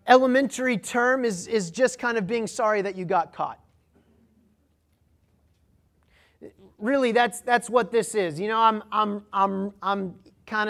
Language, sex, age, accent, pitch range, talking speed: English, male, 30-49, American, 155-215 Hz, 145 wpm